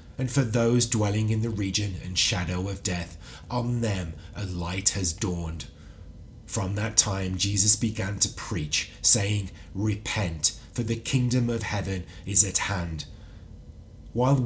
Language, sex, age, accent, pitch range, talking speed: English, male, 30-49, British, 85-110 Hz, 145 wpm